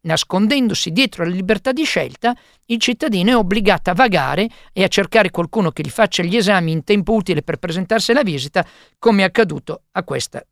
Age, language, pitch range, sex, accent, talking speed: 50-69, Italian, 155-220 Hz, male, native, 190 wpm